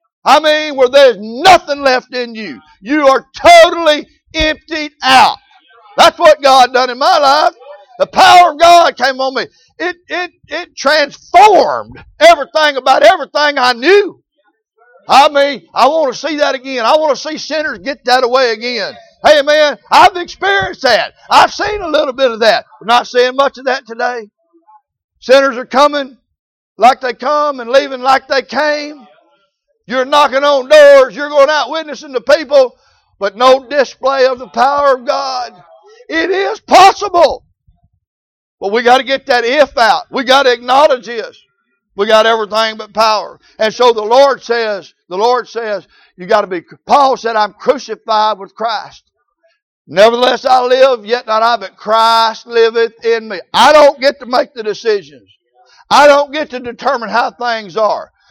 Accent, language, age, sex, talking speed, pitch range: American, English, 60-79, male, 170 wpm, 235-300 Hz